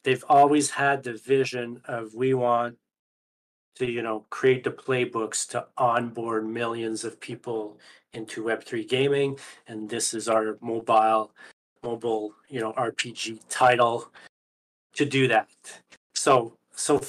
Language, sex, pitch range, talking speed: English, male, 115-130 Hz, 130 wpm